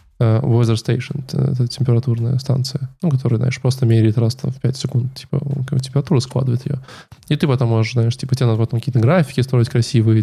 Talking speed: 195 wpm